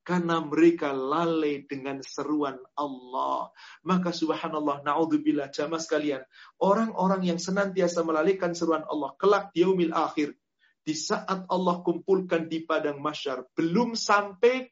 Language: Indonesian